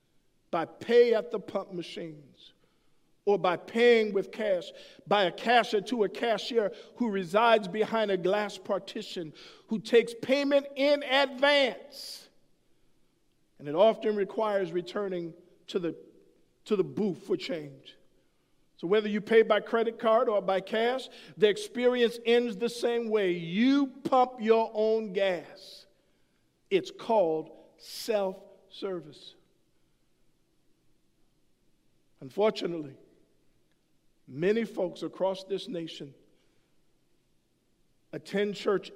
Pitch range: 180-235 Hz